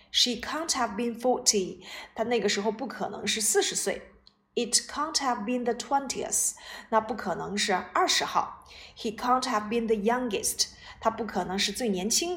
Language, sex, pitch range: Chinese, female, 195-250 Hz